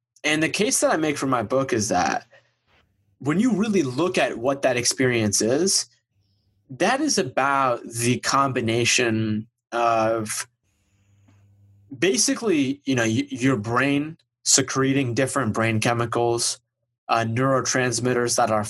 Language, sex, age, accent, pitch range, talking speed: English, male, 20-39, American, 115-135 Hz, 125 wpm